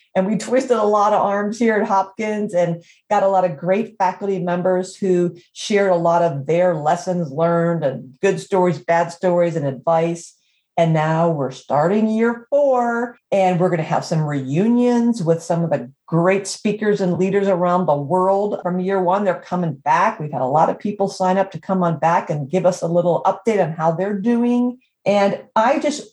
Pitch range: 170-230 Hz